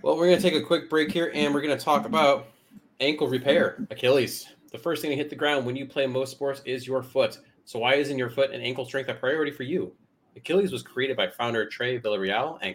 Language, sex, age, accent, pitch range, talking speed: English, male, 30-49, American, 110-145 Hz, 250 wpm